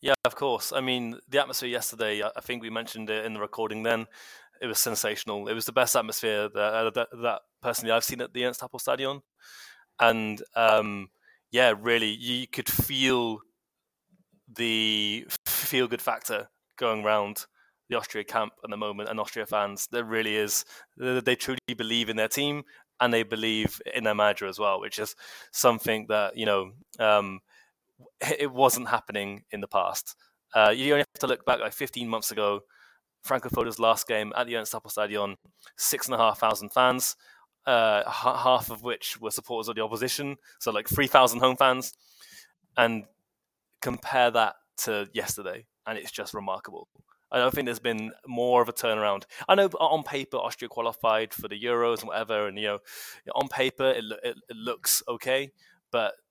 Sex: male